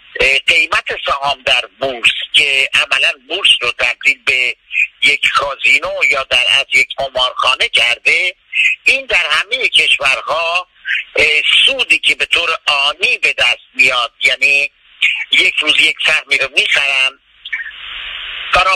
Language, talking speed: Persian, 120 wpm